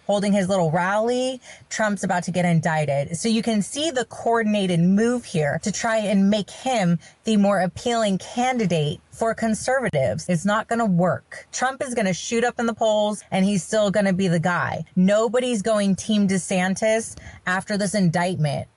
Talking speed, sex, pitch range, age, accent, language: 175 wpm, female, 170-210 Hz, 30-49, American, English